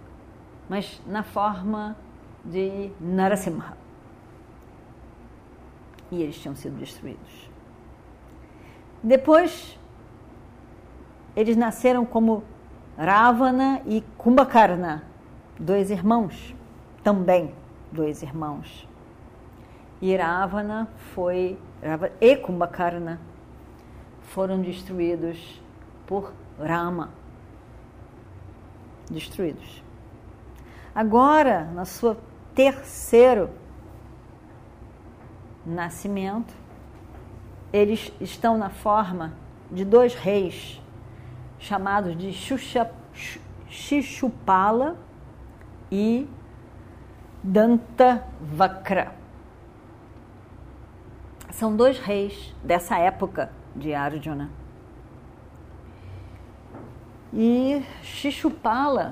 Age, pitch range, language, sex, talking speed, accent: 40-59, 130-220 Hz, Portuguese, female, 60 wpm, Brazilian